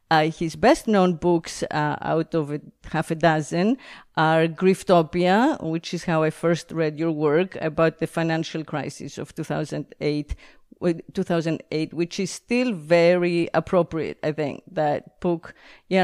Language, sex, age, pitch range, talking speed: English, female, 40-59, 160-190 Hz, 145 wpm